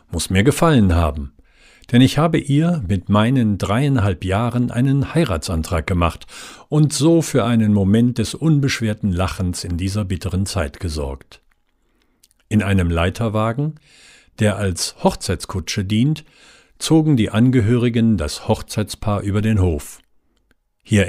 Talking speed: 125 wpm